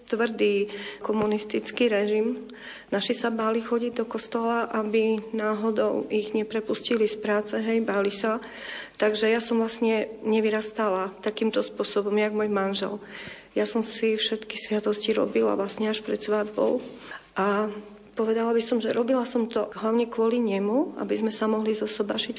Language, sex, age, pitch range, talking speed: Slovak, female, 40-59, 205-230 Hz, 145 wpm